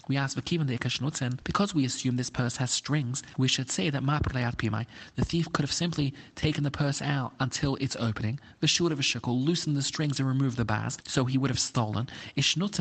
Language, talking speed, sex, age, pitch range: English, 190 wpm, male, 30-49, 115-150 Hz